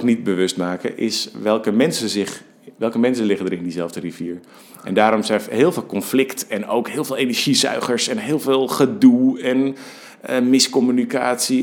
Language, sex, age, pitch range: Dutch, male, 40-59, 95-125 Hz